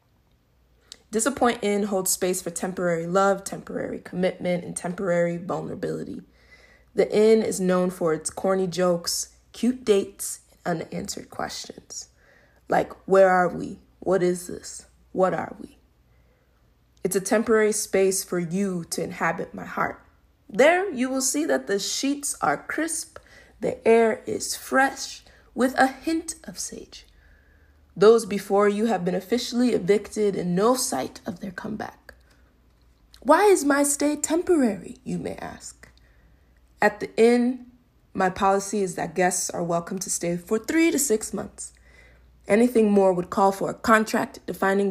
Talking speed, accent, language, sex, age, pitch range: 145 wpm, American, English, female, 20-39, 180-250 Hz